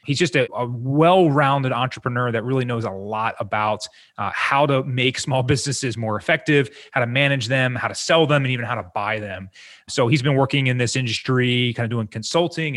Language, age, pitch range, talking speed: English, 30-49, 115-150 Hz, 210 wpm